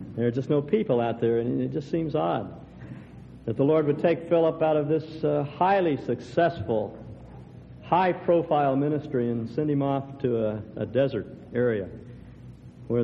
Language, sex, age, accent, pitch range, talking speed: English, male, 60-79, American, 115-155 Hz, 165 wpm